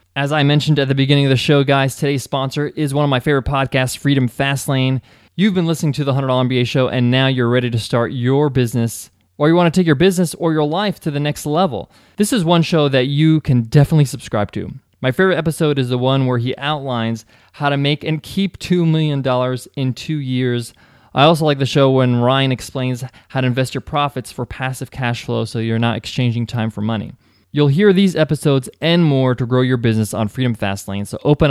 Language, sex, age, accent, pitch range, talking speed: English, male, 20-39, American, 125-160 Hz, 225 wpm